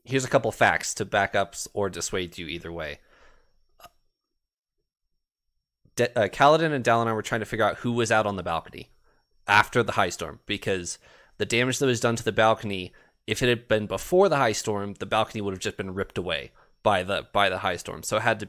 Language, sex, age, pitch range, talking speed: English, male, 20-39, 95-115 Hz, 220 wpm